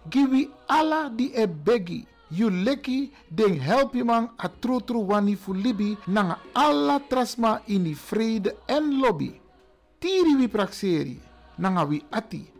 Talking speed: 125 wpm